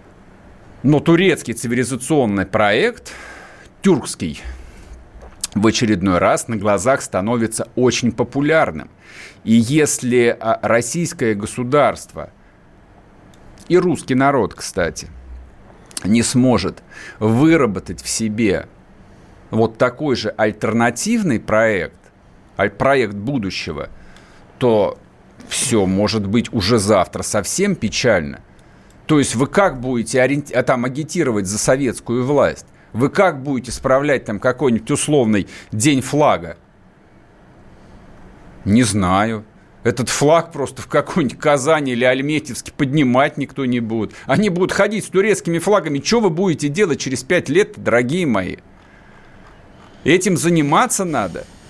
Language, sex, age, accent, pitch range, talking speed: Russian, male, 50-69, native, 105-155 Hz, 105 wpm